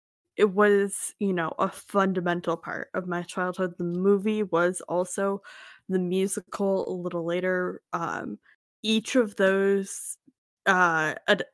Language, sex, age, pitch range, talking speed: English, female, 10-29, 175-210 Hz, 125 wpm